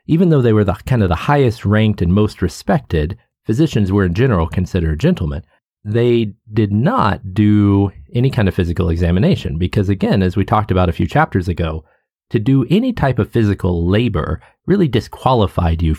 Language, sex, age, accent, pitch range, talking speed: English, male, 30-49, American, 90-120 Hz, 180 wpm